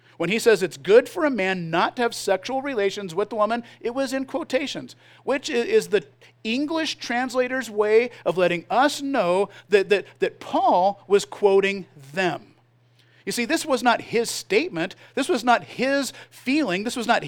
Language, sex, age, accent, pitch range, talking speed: English, male, 50-69, American, 175-260 Hz, 180 wpm